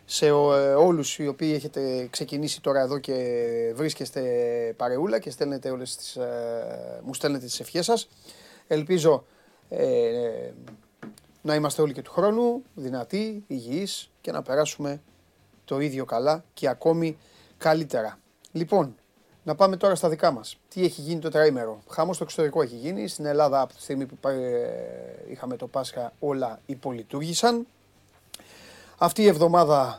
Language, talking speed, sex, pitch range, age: Greek, 145 wpm, male, 130-180 Hz, 30-49